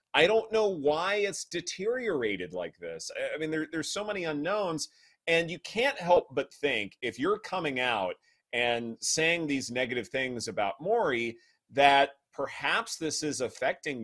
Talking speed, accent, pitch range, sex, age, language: 155 wpm, American, 120-165 Hz, male, 30-49, English